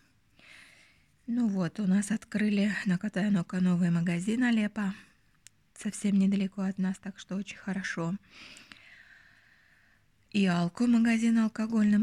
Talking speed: 105 wpm